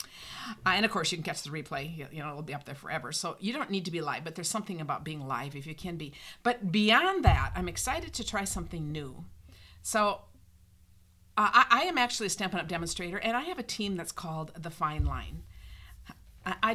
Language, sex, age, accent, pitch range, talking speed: English, female, 50-69, American, 155-210 Hz, 230 wpm